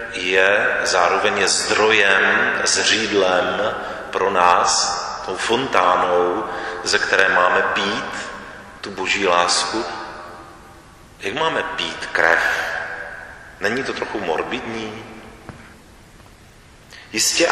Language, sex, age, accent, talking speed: Czech, male, 40-59, native, 80 wpm